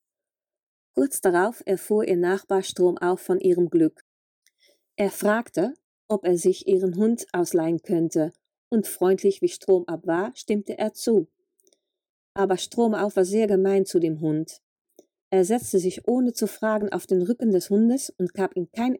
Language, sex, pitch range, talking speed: German, female, 185-225 Hz, 160 wpm